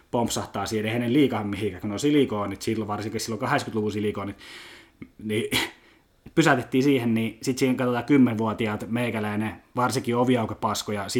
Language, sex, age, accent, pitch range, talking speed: Finnish, male, 20-39, native, 105-130 Hz, 140 wpm